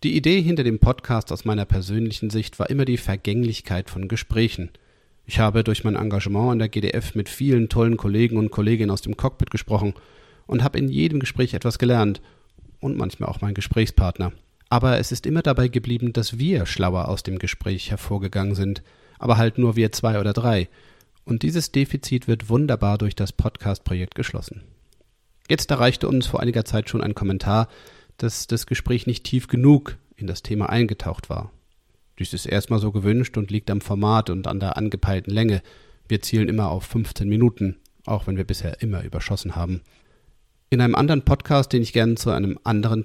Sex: male